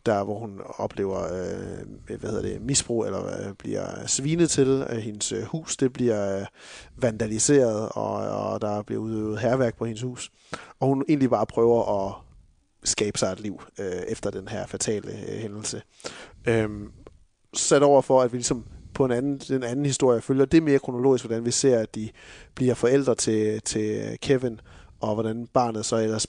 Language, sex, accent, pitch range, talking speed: Danish, male, native, 110-140 Hz, 180 wpm